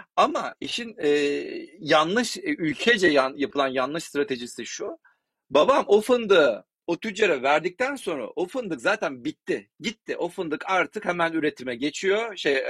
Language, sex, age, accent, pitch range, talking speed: Turkish, male, 40-59, native, 155-240 Hz, 140 wpm